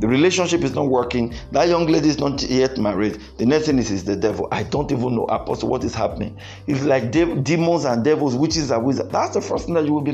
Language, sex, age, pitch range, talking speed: English, male, 50-69, 115-185 Hz, 265 wpm